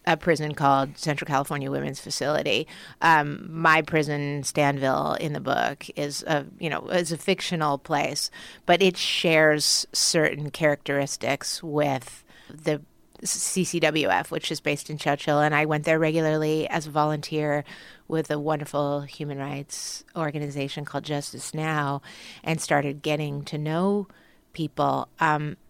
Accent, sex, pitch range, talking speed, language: American, female, 145-170 Hz, 140 wpm, English